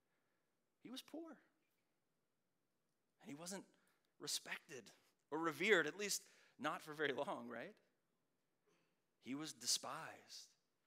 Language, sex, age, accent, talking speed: English, male, 40-59, American, 105 wpm